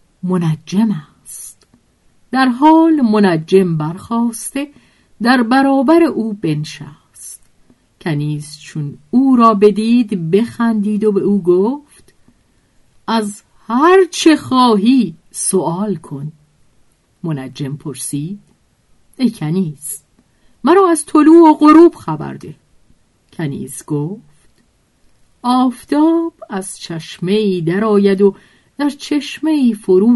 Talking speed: 95 wpm